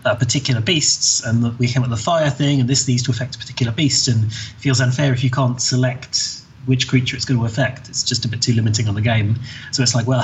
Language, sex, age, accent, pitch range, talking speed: English, male, 20-39, British, 120-135 Hz, 275 wpm